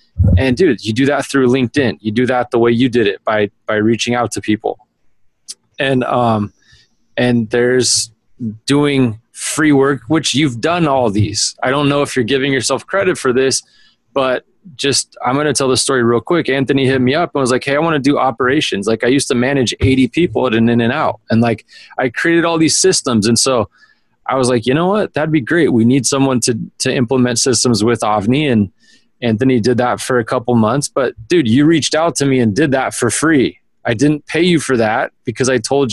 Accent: American